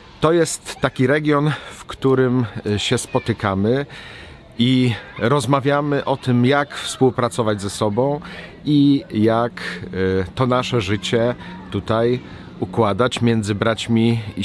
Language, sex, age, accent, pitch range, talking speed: Polish, male, 40-59, native, 95-125 Hz, 110 wpm